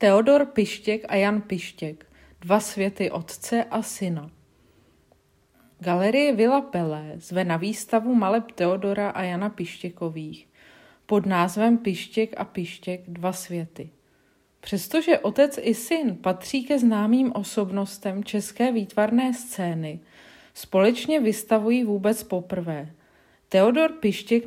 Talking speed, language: 110 wpm, Czech